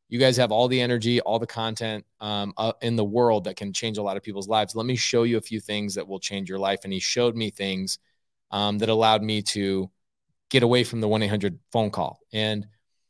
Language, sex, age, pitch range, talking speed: English, male, 20-39, 100-120 Hz, 240 wpm